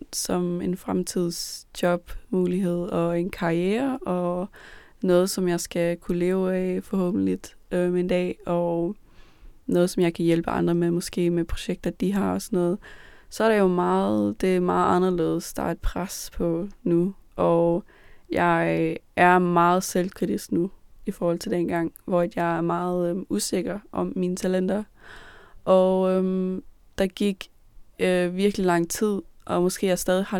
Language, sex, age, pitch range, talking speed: Danish, female, 20-39, 170-185 Hz, 160 wpm